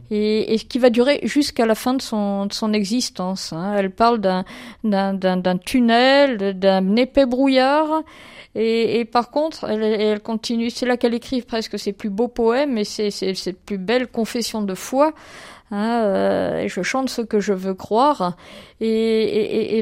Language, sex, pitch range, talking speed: French, female, 210-255 Hz, 180 wpm